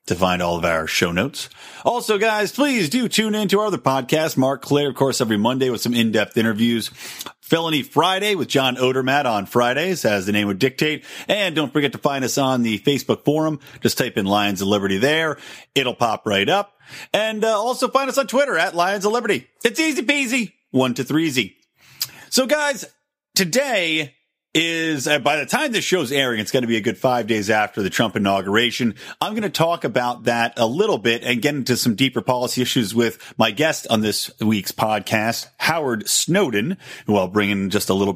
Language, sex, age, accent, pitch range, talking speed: English, male, 40-59, American, 115-165 Hz, 210 wpm